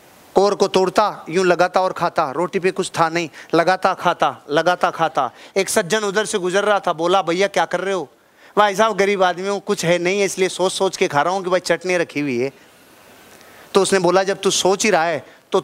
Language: Hindi